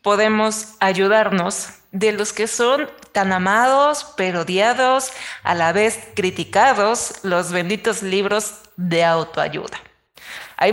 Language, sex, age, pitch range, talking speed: Spanish, female, 30-49, 185-225 Hz, 110 wpm